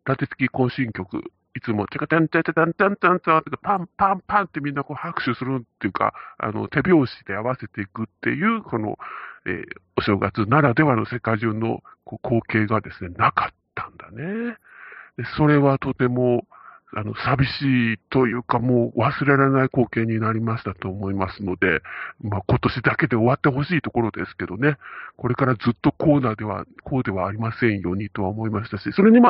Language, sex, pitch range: Japanese, female, 115-170 Hz